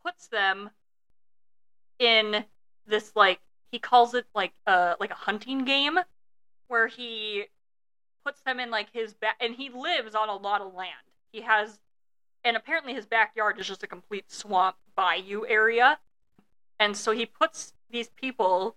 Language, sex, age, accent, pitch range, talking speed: English, female, 30-49, American, 185-225 Hz, 160 wpm